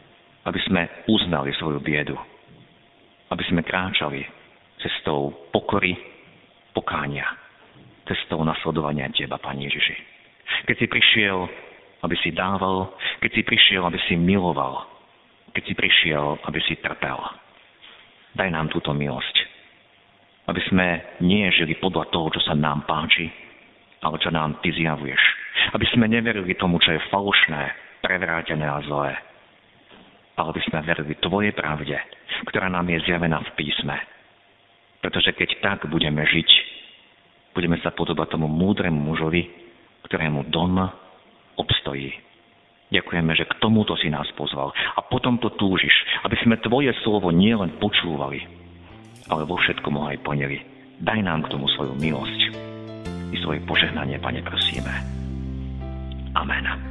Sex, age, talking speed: male, 50-69, 130 wpm